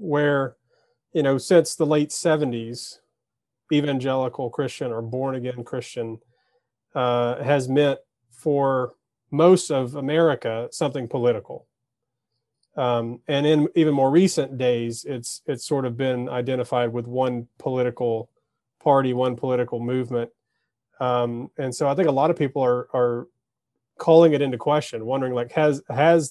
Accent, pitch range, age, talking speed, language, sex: American, 125-150 Hz, 30-49, 140 wpm, English, male